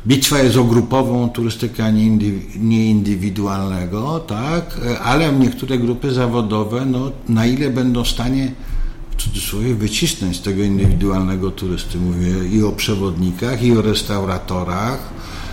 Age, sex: 60-79, male